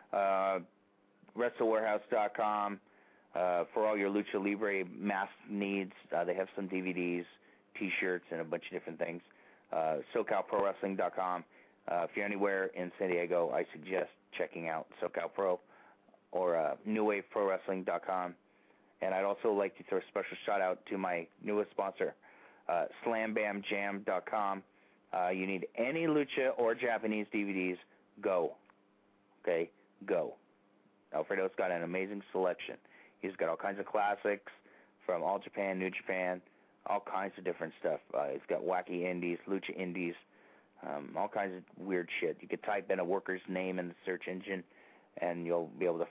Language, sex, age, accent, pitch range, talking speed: English, male, 30-49, American, 90-100 Hz, 145 wpm